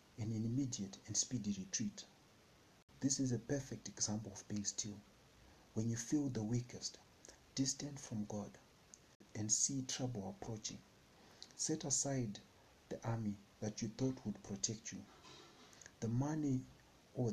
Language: English